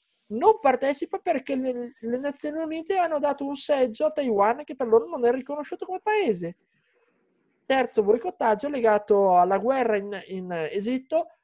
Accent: native